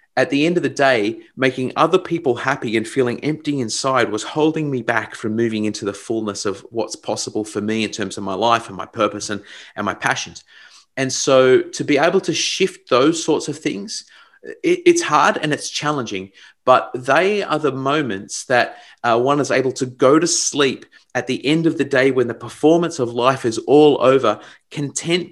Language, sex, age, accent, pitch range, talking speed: English, male, 30-49, Australian, 115-150 Hz, 200 wpm